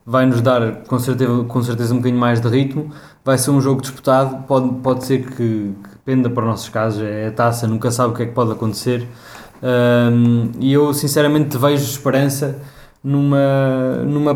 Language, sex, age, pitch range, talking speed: Portuguese, male, 20-39, 120-135 Hz, 185 wpm